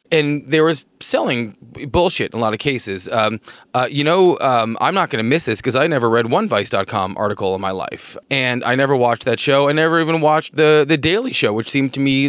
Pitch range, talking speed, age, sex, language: 120-155 Hz, 240 wpm, 30-49, male, English